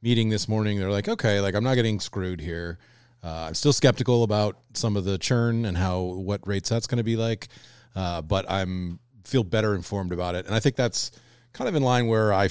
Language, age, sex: English, 30-49, male